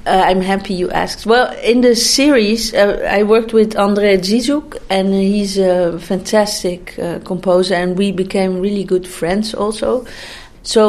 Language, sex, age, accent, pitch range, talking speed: English, female, 40-59, Dutch, 185-225 Hz, 160 wpm